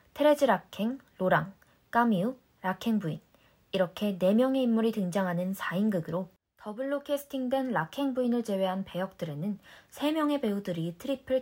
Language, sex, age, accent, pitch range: Korean, female, 20-39, native, 175-245 Hz